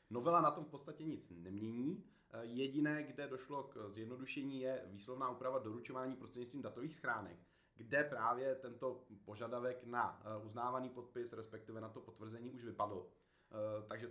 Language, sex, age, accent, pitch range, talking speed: Czech, male, 30-49, native, 110-125 Hz, 140 wpm